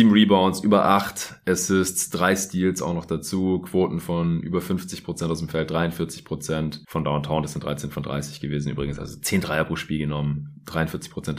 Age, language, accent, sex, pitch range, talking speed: 30-49, German, German, male, 75-90 Hz, 175 wpm